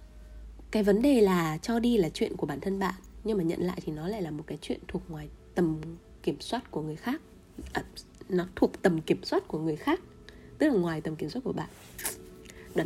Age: 20-39